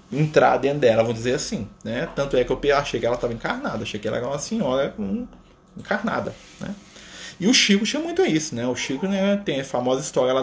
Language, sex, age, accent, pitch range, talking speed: Portuguese, male, 20-39, Brazilian, 130-205 Hz, 230 wpm